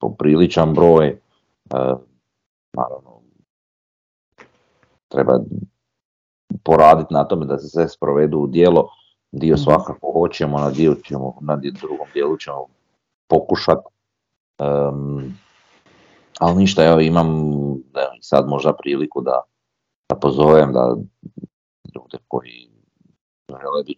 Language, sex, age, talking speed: Croatian, male, 40-59, 100 wpm